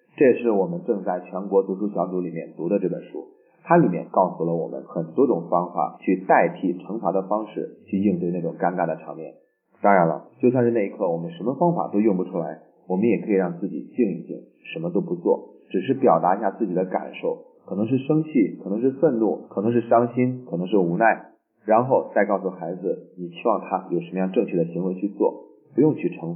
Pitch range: 95-130 Hz